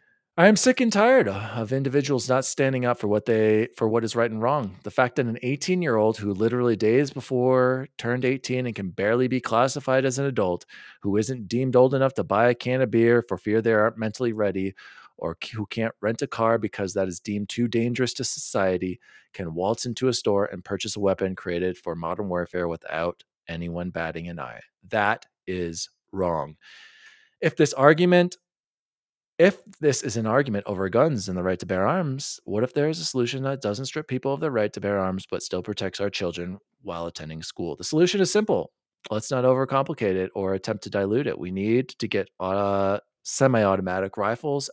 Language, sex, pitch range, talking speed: English, male, 100-135 Hz, 200 wpm